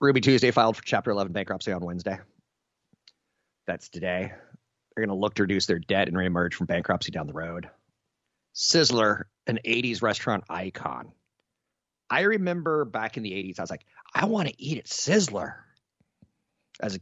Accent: American